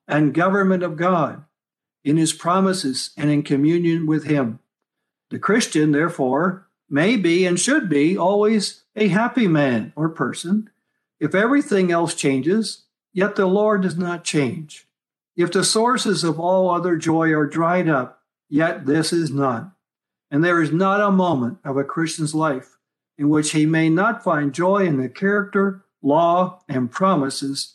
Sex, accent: male, American